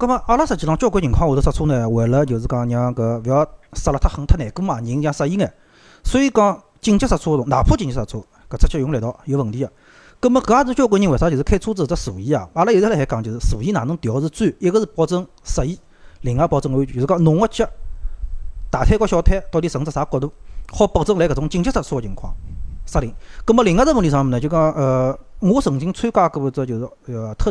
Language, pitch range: Chinese, 120-170 Hz